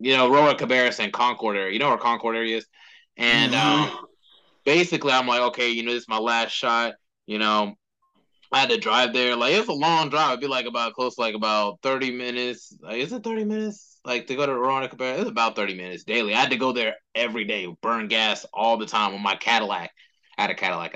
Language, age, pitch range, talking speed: English, 20-39, 110-135 Hz, 240 wpm